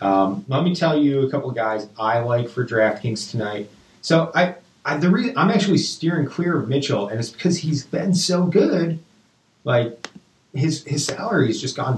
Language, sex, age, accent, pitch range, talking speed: English, male, 30-49, American, 110-155 Hz, 195 wpm